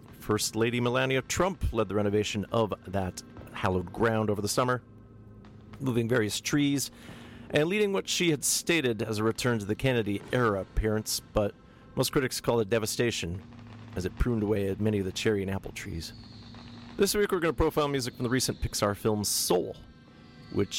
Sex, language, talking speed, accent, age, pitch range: male, English, 180 wpm, American, 40-59, 100-120 Hz